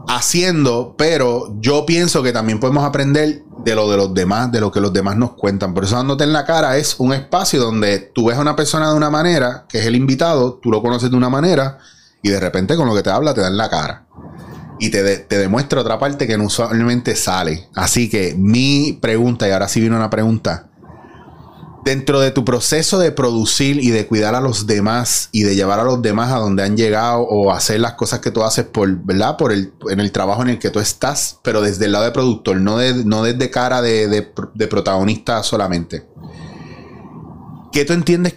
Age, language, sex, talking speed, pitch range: 30-49, Spanish, male, 220 wpm, 105-140 Hz